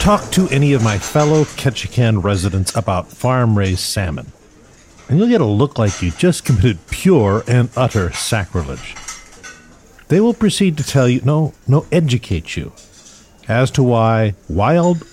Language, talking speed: English, 150 wpm